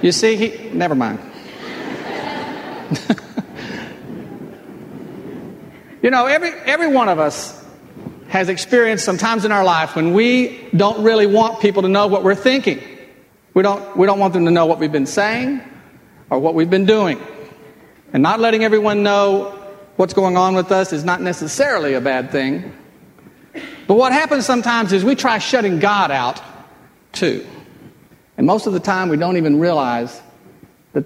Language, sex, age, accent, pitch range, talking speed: English, male, 50-69, American, 155-220 Hz, 160 wpm